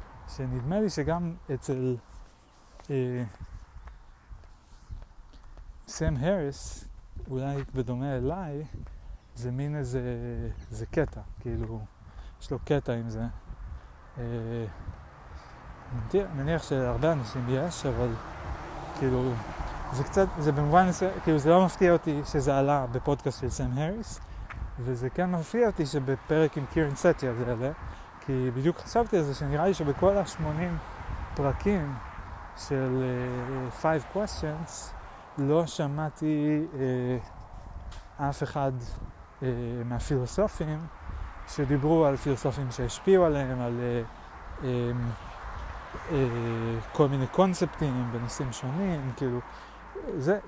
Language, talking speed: Hebrew, 110 wpm